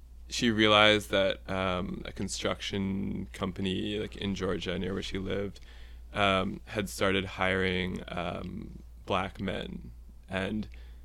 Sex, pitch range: male, 65-100 Hz